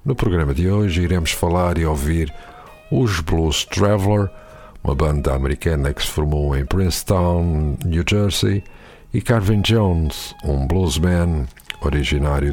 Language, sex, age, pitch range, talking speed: Portuguese, male, 50-69, 75-95 Hz, 130 wpm